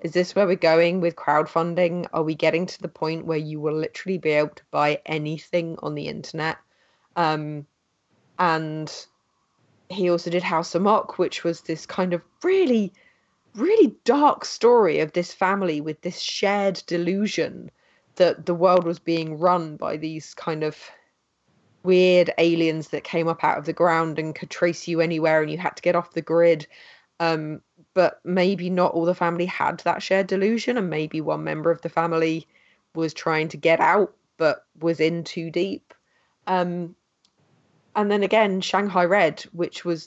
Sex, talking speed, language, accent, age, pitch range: female, 175 wpm, English, British, 20-39, 160-180 Hz